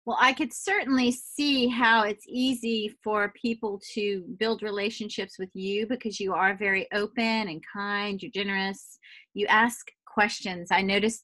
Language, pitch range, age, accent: English, 200-245 Hz, 30-49, American